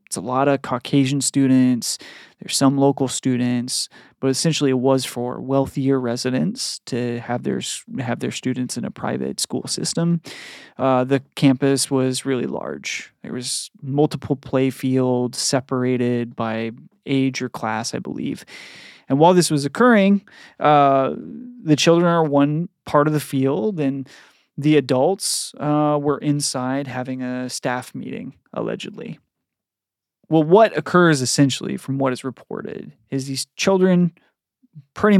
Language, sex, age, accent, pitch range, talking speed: English, male, 30-49, American, 130-165 Hz, 140 wpm